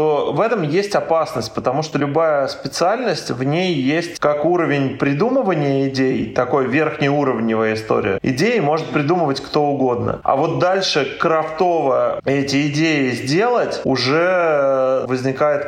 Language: Russian